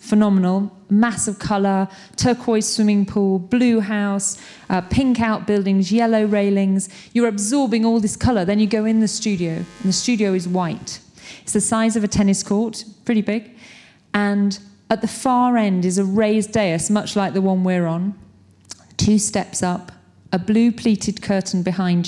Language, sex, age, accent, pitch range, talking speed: English, female, 40-59, British, 185-225 Hz, 165 wpm